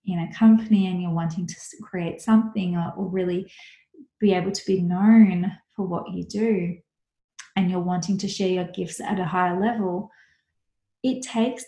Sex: female